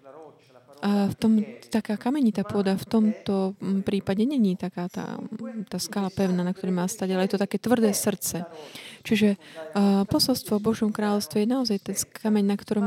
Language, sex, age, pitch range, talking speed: Slovak, female, 20-39, 185-215 Hz, 175 wpm